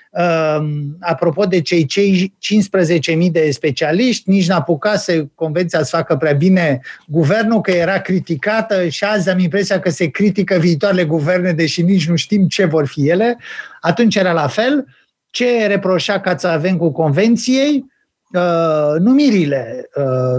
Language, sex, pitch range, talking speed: Romanian, male, 165-205 Hz, 155 wpm